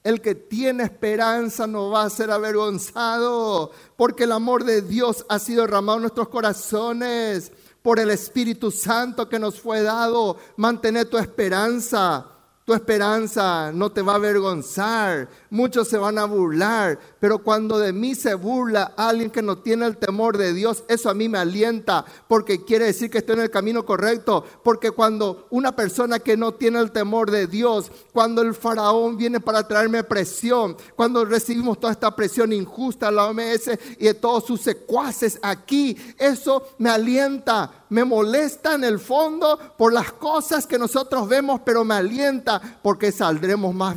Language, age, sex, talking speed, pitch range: Spanish, 50-69, male, 170 wpm, 205-235 Hz